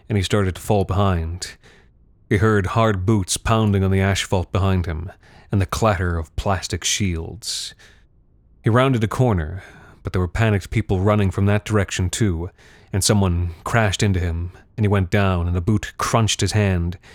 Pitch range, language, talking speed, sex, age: 90-105 Hz, English, 180 wpm, male, 30-49